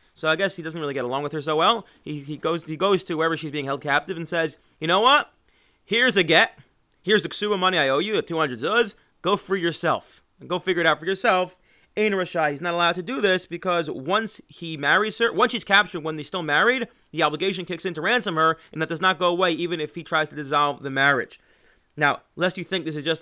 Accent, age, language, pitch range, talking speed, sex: American, 30-49, English, 150-185 Hz, 255 wpm, male